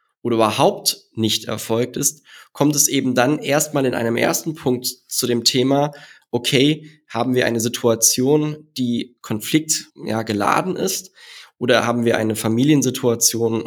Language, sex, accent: German, male, German